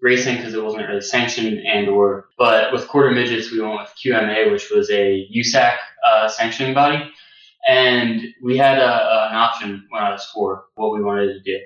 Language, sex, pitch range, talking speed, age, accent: English, male, 105-125 Hz, 190 wpm, 20-39, American